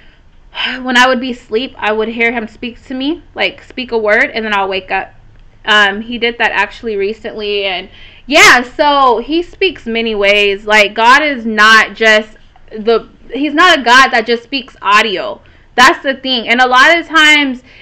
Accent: American